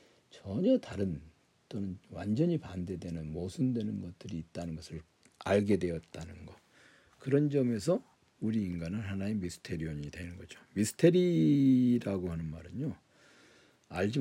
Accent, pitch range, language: native, 90-125 Hz, Korean